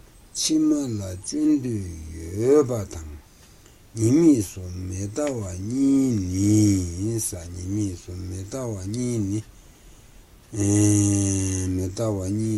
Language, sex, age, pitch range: Italian, male, 60-79, 90-115 Hz